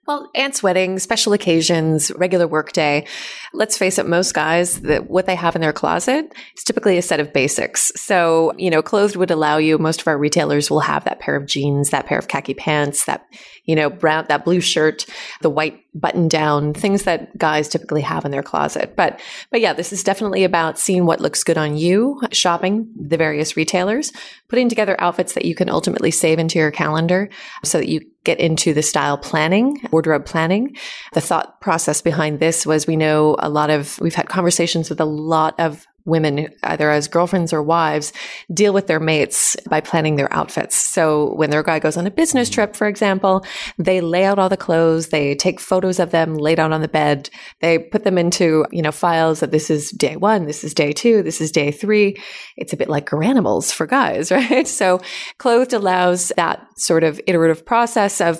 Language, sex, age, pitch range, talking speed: English, female, 30-49, 155-190 Hz, 205 wpm